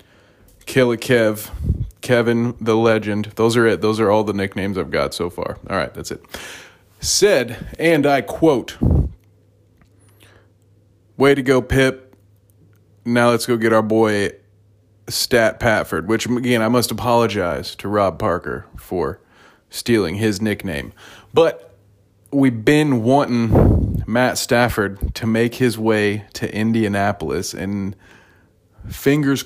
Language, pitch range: English, 100-120 Hz